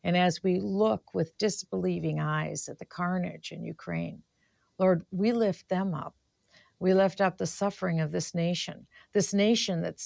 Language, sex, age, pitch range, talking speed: English, female, 50-69, 170-205 Hz, 165 wpm